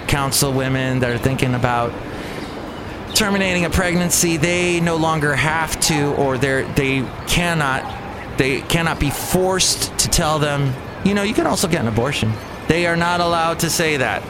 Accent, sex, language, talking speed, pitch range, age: American, male, English, 170 wpm, 115-155 Hz, 30-49